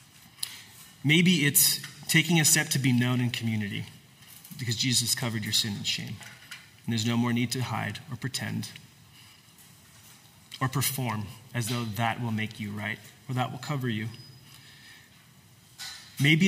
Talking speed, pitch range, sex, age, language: 150 wpm, 120-145 Hz, male, 20-39, English